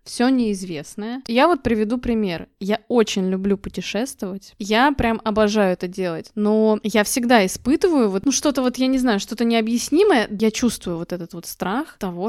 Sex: female